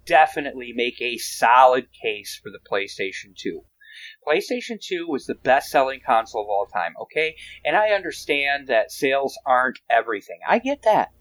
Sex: male